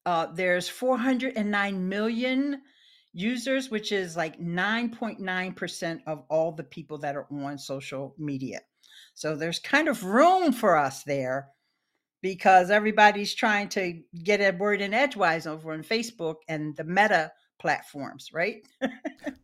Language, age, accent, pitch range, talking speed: English, 50-69, American, 165-245 Hz, 135 wpm